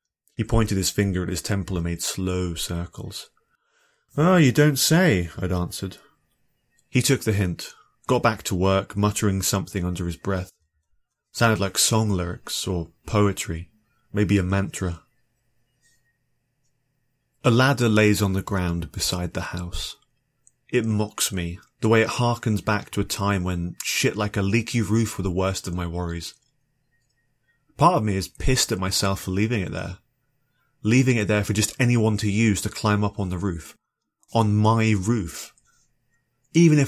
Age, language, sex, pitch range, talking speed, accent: 30-49, English, male, 95-125 Hz, 165 wpm, British